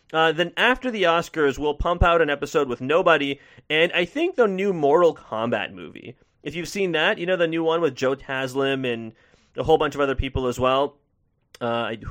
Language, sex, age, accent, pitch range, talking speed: English, male, 30-49, American, 125-170 Hz, 210 wpm